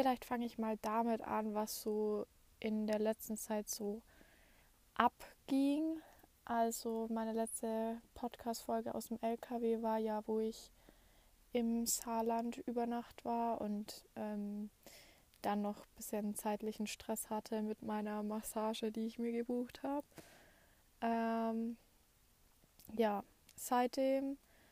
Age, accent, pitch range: 20-39, German, 215-235 Hz